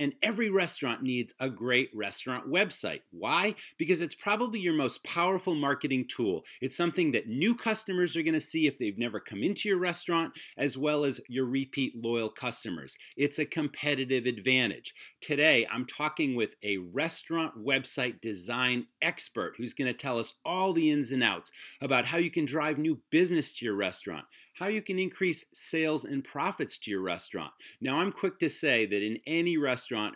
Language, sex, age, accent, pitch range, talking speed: English, male, 30-49, American, 120-165 Hz, 185 wpm